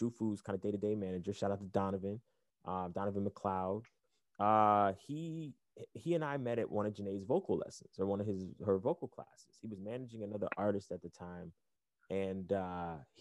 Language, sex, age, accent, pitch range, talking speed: English, male, 20-39, American, 100-120 Hz, 185 wpm